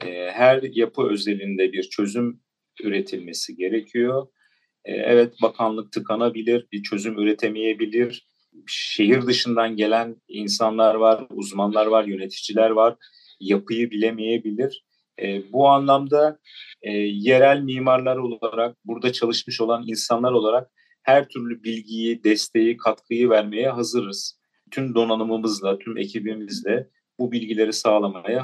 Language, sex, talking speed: Turkish, male, 100 wpm